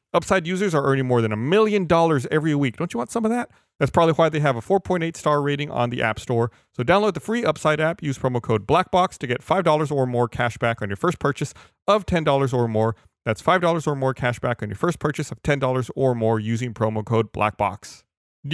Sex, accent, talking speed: male, American, 240 wpm